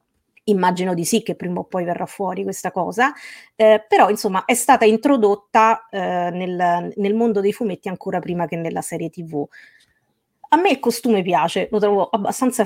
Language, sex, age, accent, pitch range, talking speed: Italian, female, 30-49, native, 180-205 Hz, 175 wpm